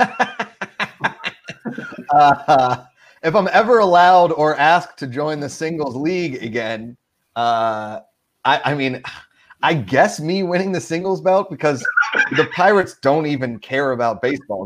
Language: English